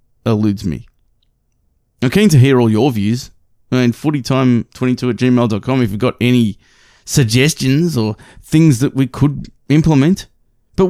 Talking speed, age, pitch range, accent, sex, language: 150 wpm, 20-39, 110-135 Hz, Australian, male, English